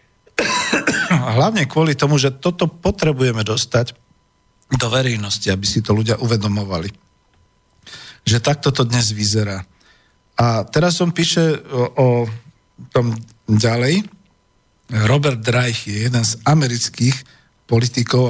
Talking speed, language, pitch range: 115 wpm, Slovak, 115-135 Hz